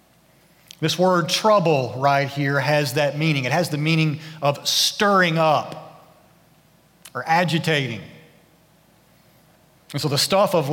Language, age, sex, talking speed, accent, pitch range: English, 40-59, male, 125 wpm, American, 145-170 Hz